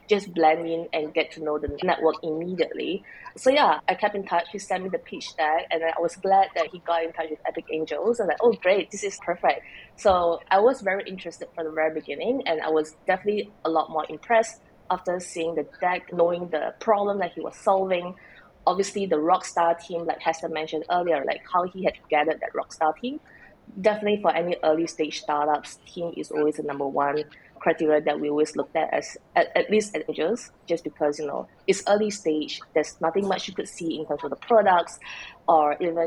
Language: English